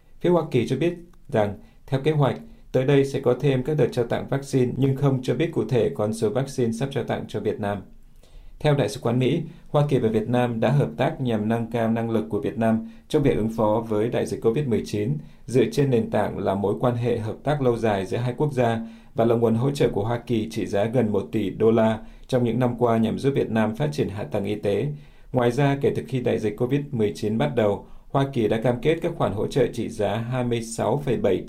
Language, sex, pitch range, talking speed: Vietnamese, male, 110-130 Hz, 250 wpm